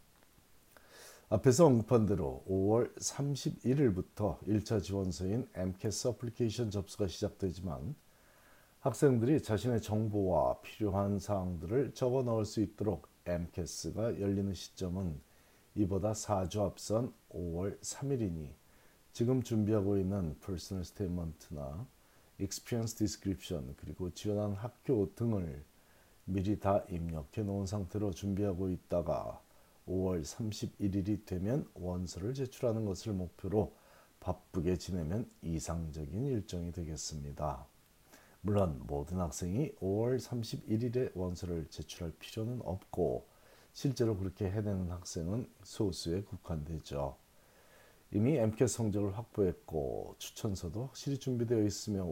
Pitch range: 90-110 Hz